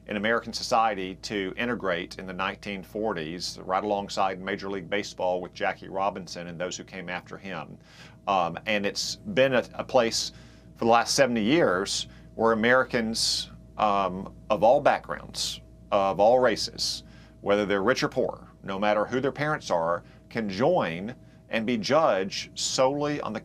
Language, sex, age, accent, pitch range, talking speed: English, male, 40-59, American, 100-135 Hz, 160 wpm